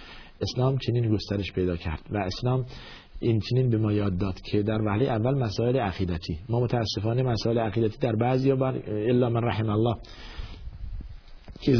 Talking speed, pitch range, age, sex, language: 160 wpm, 110-135 Hz, 50-69, male, Persian